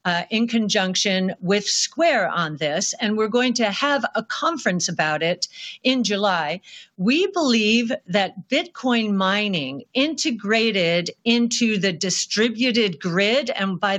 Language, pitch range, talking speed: English, 195-245 Hz, 130 wpm